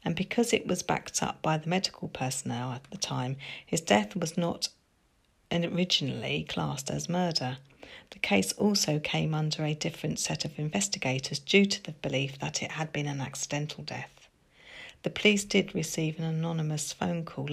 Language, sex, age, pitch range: English, female, 40-59, 135-175 Hz